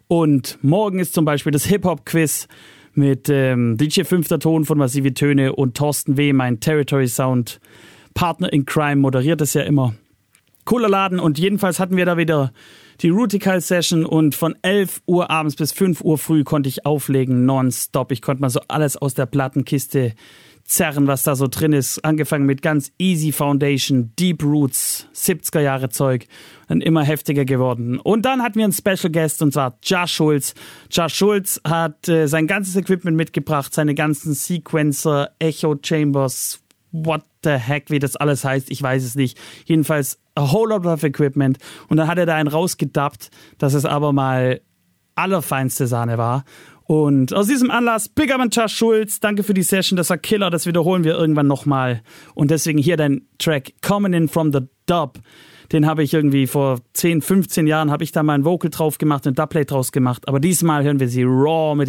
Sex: male